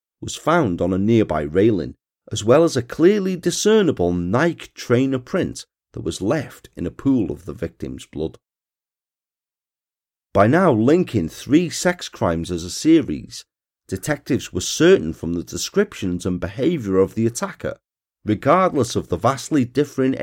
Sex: male